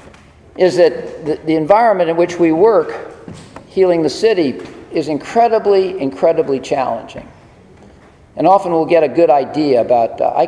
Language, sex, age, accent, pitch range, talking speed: English, male, 50-69, American, 140-190 Hz, 145 wpm